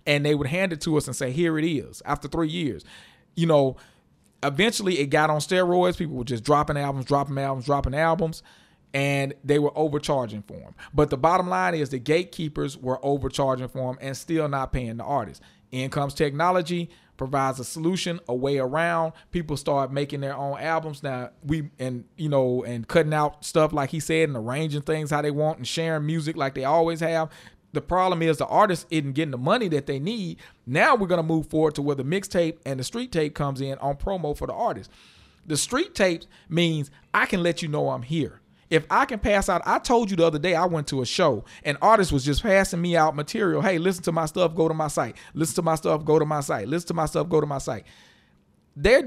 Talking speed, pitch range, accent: 230 wpm, 140-170 Hz, American